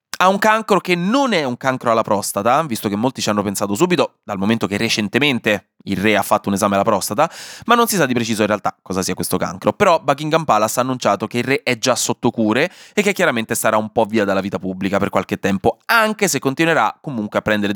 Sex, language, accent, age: male, Italian, native, 20-39